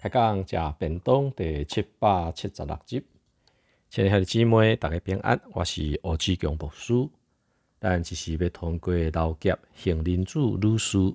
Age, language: 50-69, Chinese